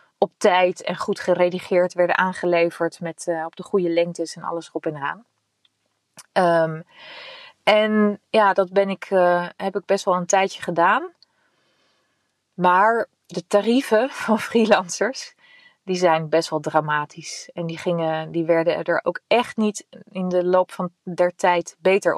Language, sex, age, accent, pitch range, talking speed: Dutch, female, 30-49, Dutch, 170-205 Hz, 155 wpm